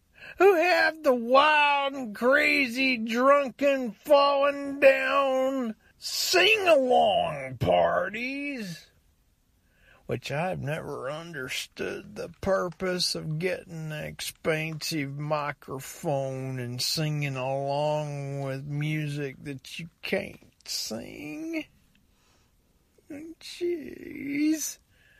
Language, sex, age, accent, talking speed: English, male, 50-69, American, 75 wpm